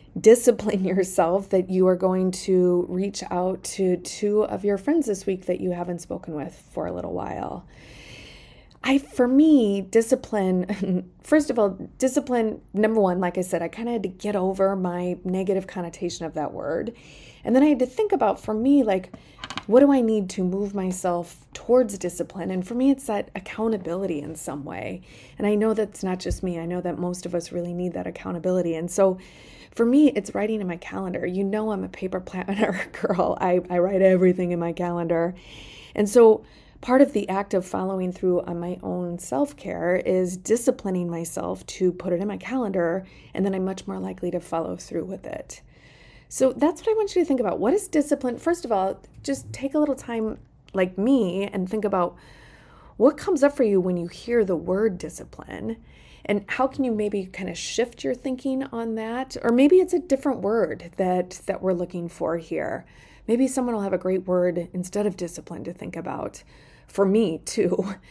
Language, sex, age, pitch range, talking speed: English, female, 30-49, 180-230 Hz, 200 wpm